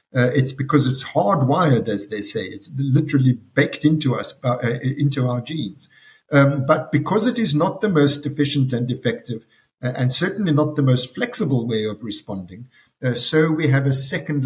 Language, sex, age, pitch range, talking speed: English, male, 60-79, 125-150 Hz, 185 wpm